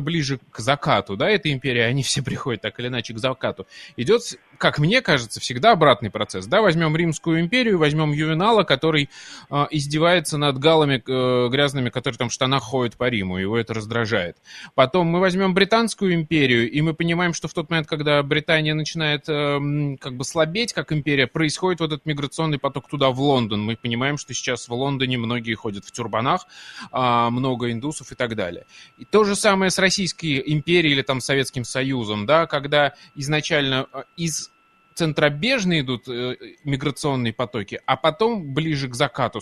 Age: 20-39